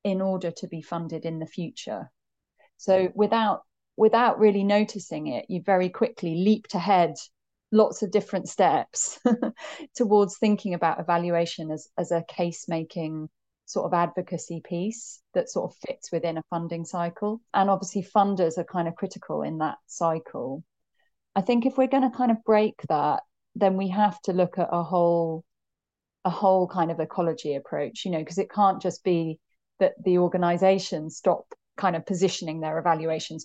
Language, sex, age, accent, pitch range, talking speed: English, female, 30-49, British, 165-200 Hz, 170 wpm